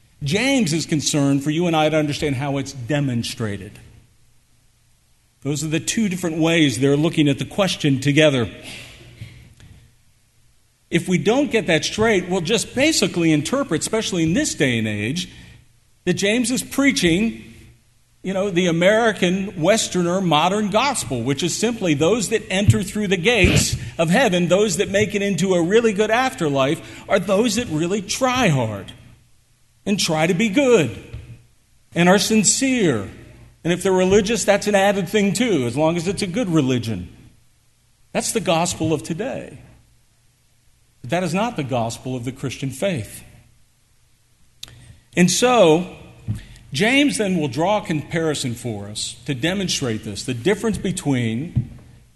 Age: 50-69